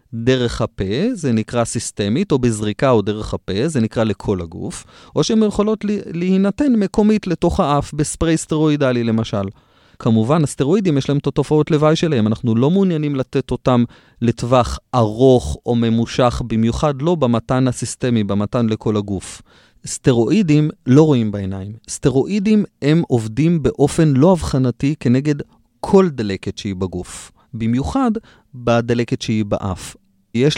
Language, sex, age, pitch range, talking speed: Hebrew, male, 30-49, 115-150 Hz, 135 wpm